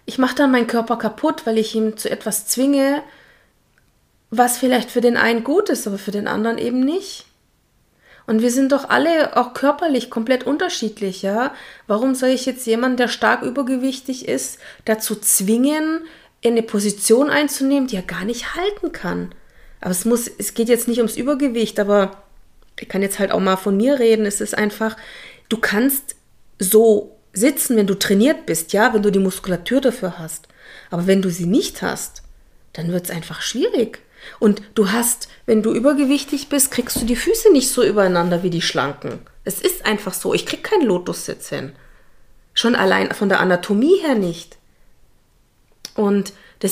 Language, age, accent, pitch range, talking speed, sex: German, 30-49, German, 205-275 Hz, 175 wpm, female